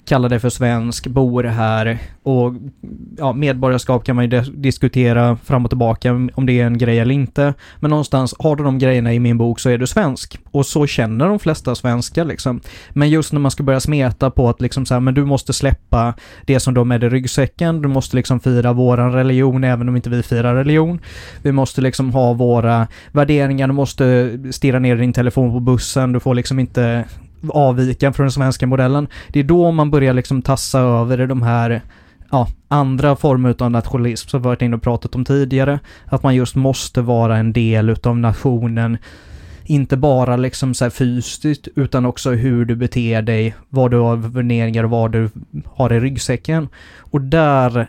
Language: Swedish